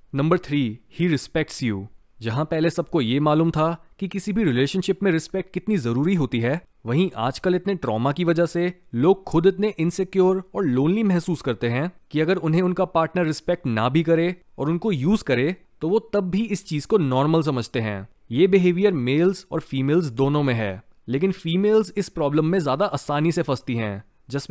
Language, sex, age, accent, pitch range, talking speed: Hindi, male, 20-39, native, 135-190 Hz, 195 wpm